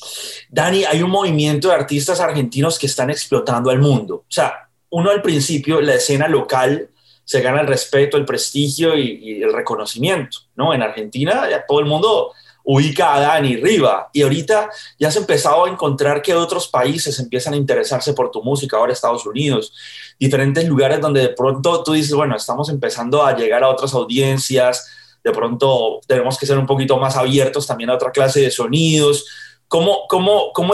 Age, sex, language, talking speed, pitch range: 30-49, male, Spanish, 180 wpm, 135-170 Hz